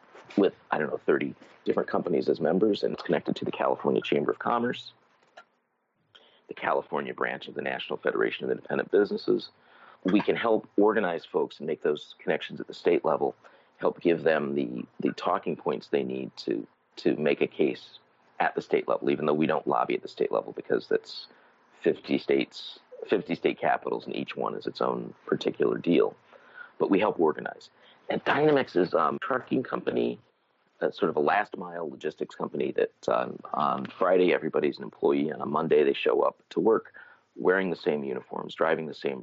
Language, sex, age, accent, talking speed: English, male, 40-59, American, 190 wpm